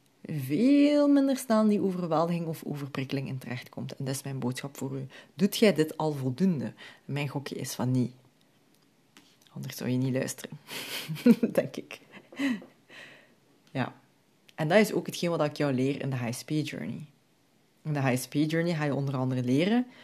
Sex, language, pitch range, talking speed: female, Dutch, 135-195 Hz, 175 wpm